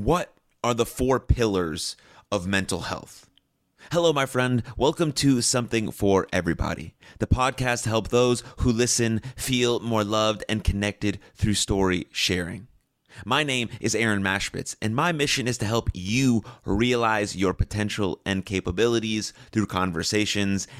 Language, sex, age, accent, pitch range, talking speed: English, male, 30-49, American, 100-120 Hz, 145 wpm